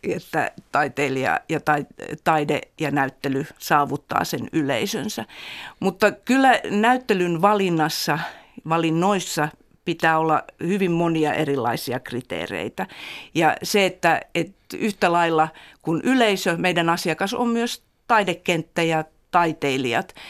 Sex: female